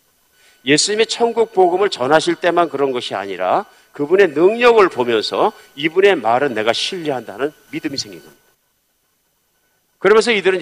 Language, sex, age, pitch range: Korean, male, 50-69, 140-215 Hz